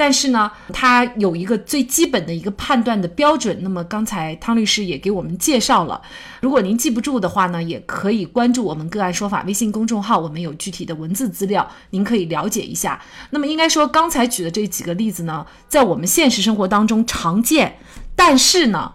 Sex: female